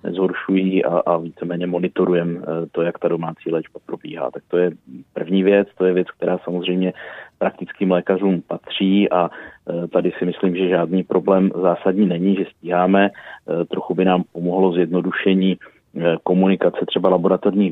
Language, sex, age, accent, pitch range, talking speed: Czech, male, 30-49, native, 90-95 Hz, 140 wpm